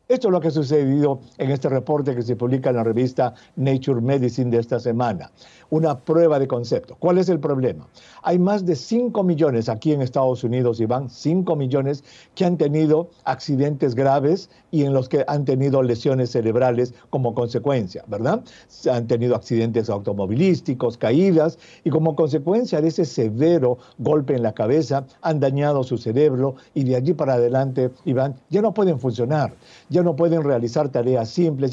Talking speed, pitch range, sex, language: 170 wpm, 125-160 Hz, male, English